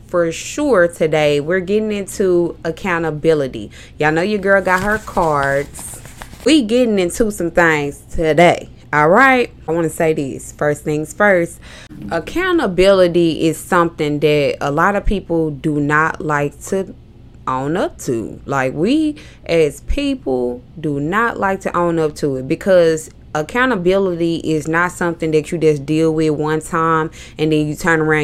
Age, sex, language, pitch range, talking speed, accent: 20-39, female, English, 150-190 Hz, 155 wpm, American